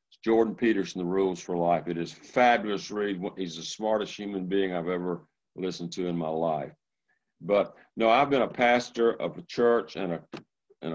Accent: American